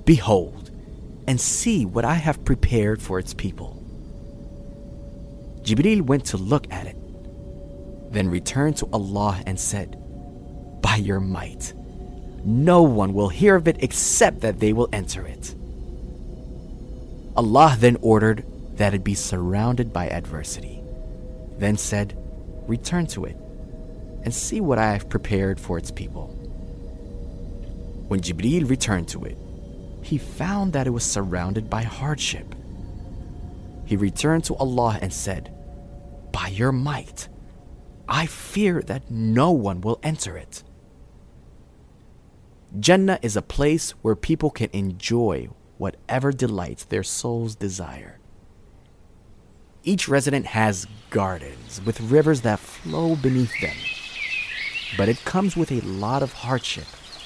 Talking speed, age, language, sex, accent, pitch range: 125 wpm, 30-49, English, male, American, 90-130 Hz